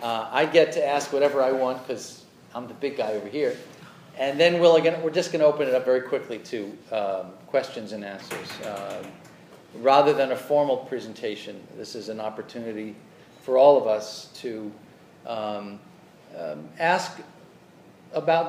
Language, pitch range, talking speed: English, 120-165 Hz, 170 wpm